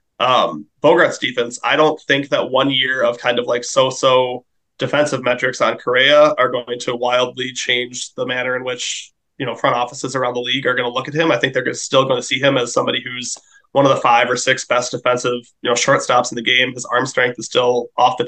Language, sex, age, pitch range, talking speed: English, male, 20-39, 125-145 Hz, 240 wpm